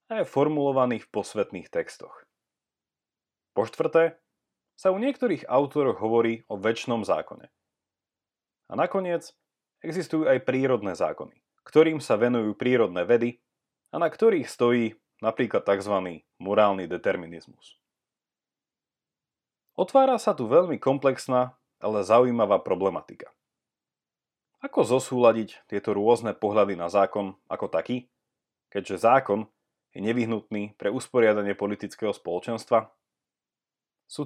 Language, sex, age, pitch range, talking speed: Slovak, male, 30-49, 105-150 Hz, 110 wpm